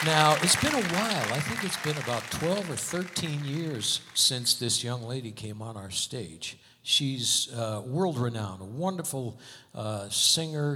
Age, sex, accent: 60-79, male, American